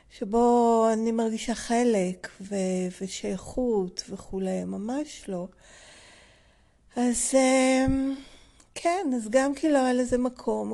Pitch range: 200-250 Hz